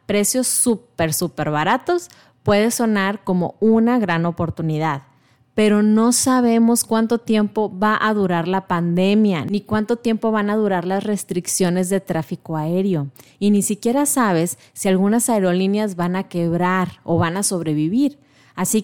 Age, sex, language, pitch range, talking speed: 30-49, female, Spanish, 170-220 Hz, 145 wpm